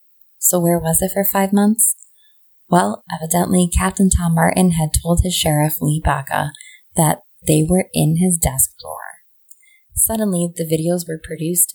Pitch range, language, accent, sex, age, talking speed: 145-180 Hz, English, American, female, 20-39, 155 wpm